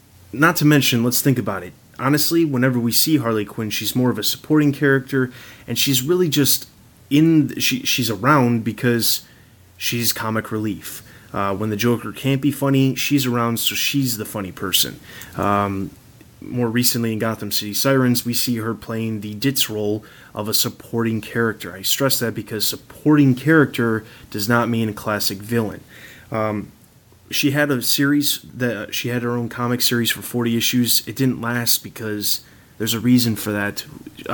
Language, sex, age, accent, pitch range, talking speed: English, male, 30-49, American, 110-130 Hz, 180 wpm